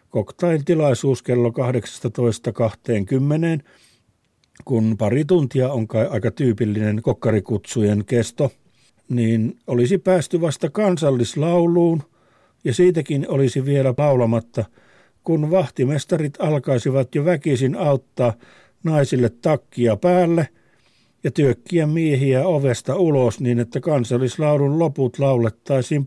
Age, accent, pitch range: 50-69, native, 115-150 Hz